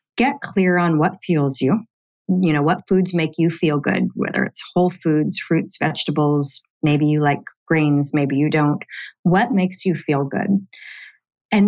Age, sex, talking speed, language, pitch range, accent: 40-59, female, 170 wpm, English, 155-200 Hz, American